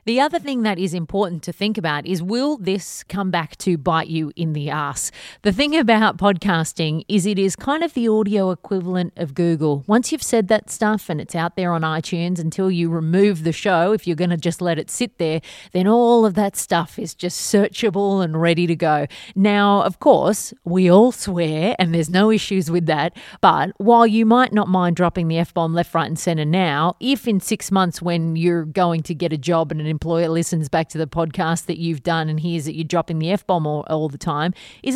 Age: 30-49